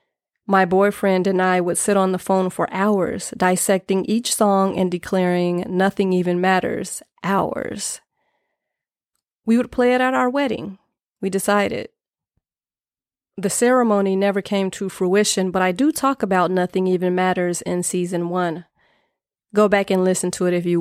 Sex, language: female, English